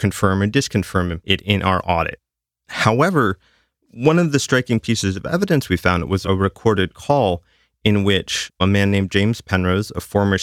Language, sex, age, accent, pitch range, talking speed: English, male, 30-49, American, 90-110 Hz, 175 wpm